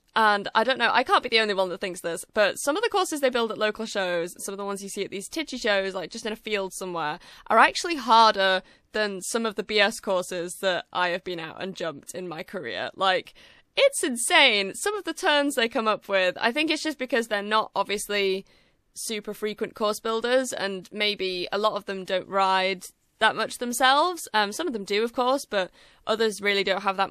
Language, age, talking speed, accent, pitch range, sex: English, 10-29, 230 wpm, British, 190-235 Hz, female